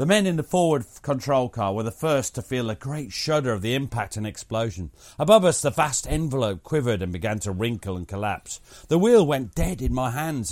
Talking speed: 220 wpm